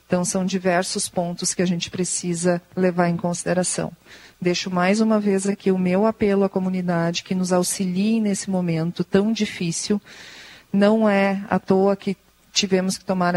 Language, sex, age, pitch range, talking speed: Portuguese, female, 40-59, 180-205 Hz, 160 wpm